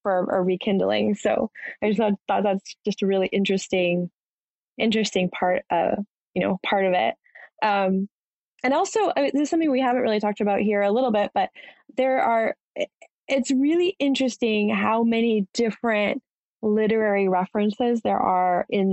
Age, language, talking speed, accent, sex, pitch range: 20-39, English, 165 wpm, American, female, 185-230 Hz